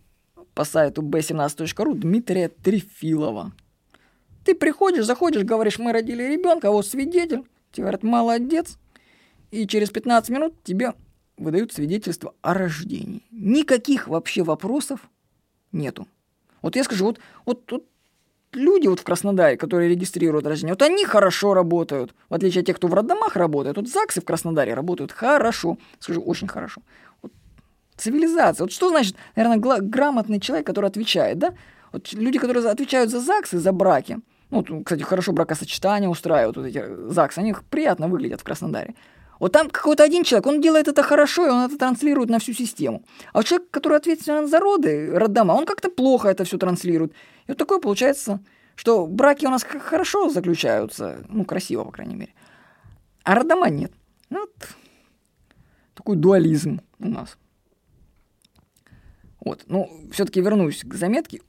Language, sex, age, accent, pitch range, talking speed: Russian, female, 20-39, native, 180-280 Hz, 150 wpm